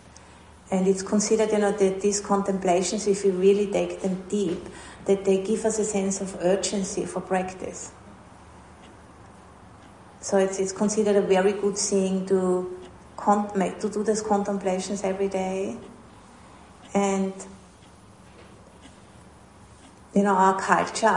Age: 30-49